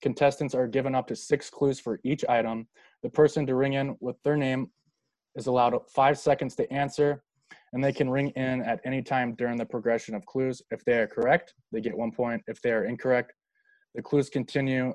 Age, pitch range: 20-39, 115-140 Hz